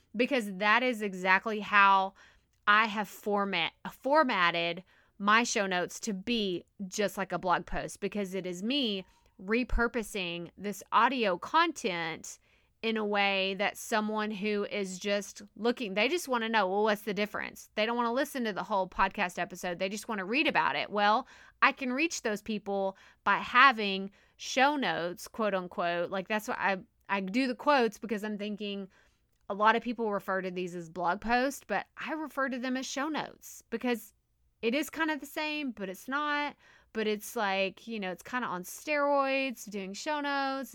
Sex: female